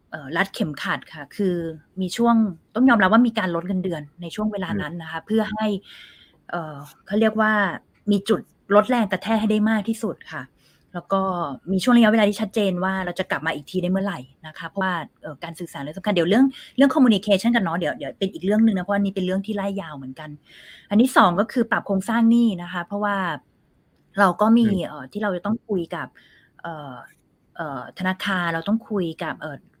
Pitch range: 170-215 Hz